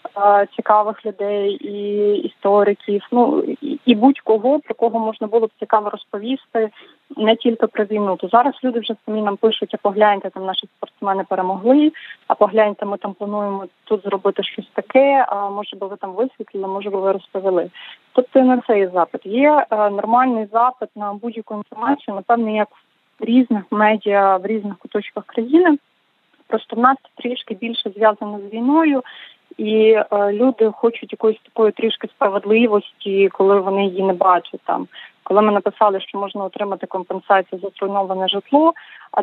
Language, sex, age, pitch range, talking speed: English, female, 20-39, 200-230 Hz, 160 wpm